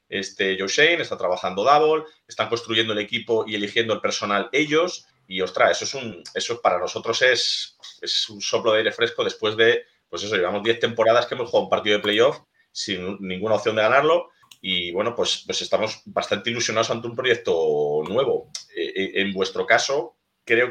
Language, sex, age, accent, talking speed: Spanish, male, 30-49, Spanish, 190 wpm